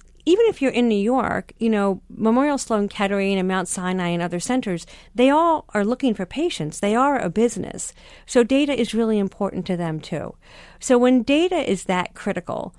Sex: female